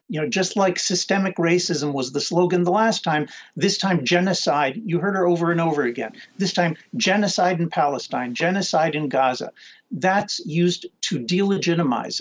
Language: English